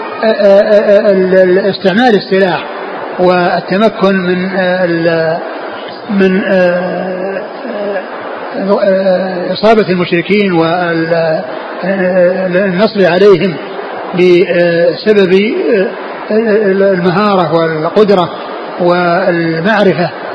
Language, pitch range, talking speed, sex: Arabic, 180-210 Hz, 40 wpm, male